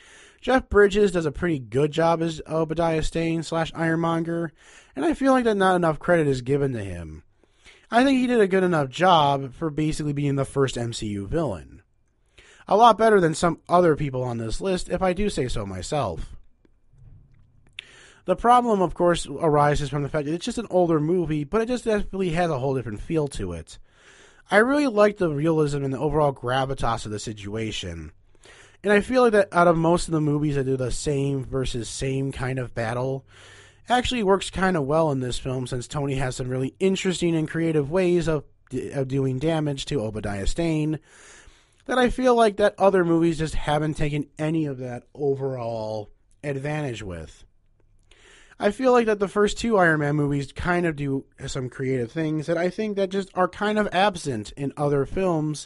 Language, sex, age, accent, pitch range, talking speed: English, male, 30-49, American, 130-180 Hz, 195 wpm